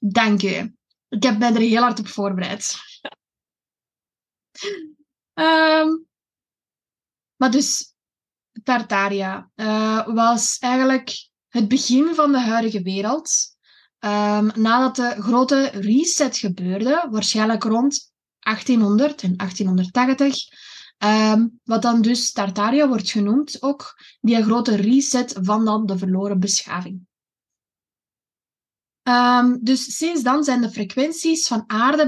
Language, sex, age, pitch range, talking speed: Dutch, female, 20-39, 210-275 Hz, 105 wpm